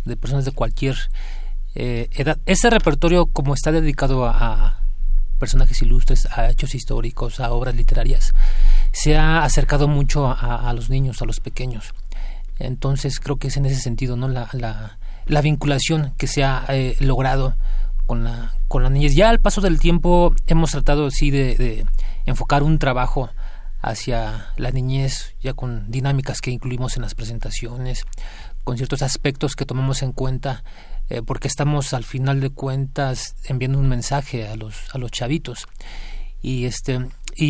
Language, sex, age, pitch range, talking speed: Spanish, male, 30-49, 120-145 Hz, 165 wpm